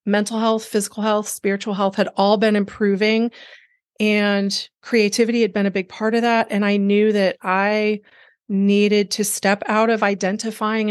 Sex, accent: female, American